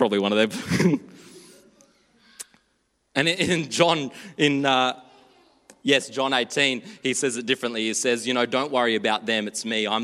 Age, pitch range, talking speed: 20-39, 130-190 Hz, 160 wpm